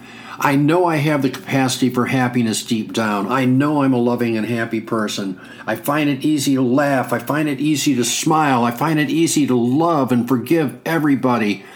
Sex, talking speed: male, 200 wpm